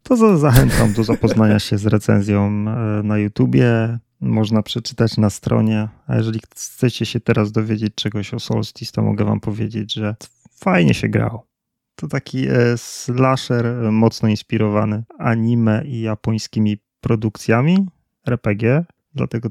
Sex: male